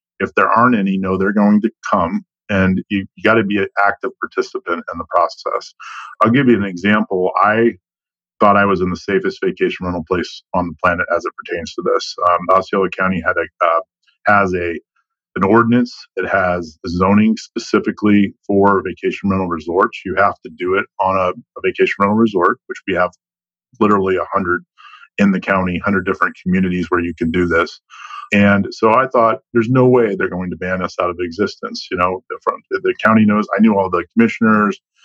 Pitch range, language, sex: 95-115 Hz, English, male